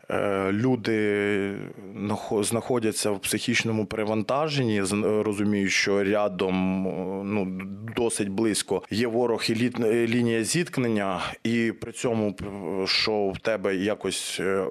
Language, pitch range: Ukrainian, 95-110 Hz